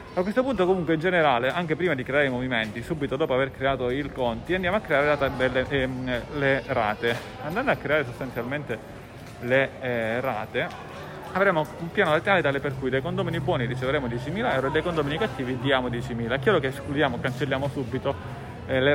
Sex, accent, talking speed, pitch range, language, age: male, native, 185 wpm, 125-160 Hz, Italian, 30-49